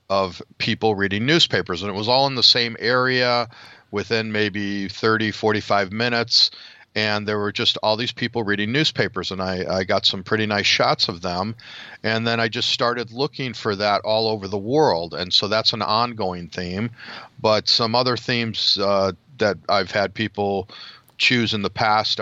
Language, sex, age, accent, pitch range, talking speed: English, male, 40-59, American, 100-120 Hz, 180 wpm